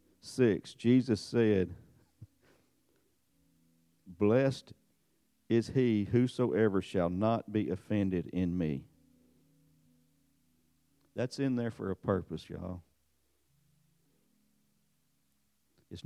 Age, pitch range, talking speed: 50-69, 85-115 Hz, 80 wpm